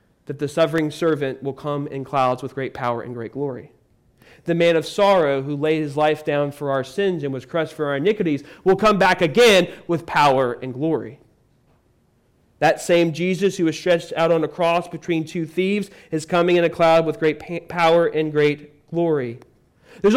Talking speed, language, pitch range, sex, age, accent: 195 wpm, English, 145-190 Hz, male, 40-59, American